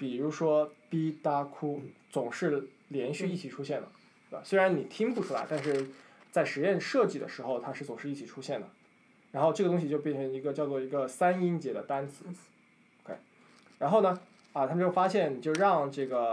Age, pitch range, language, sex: 20-39, 135-180 Hz, Chinese, male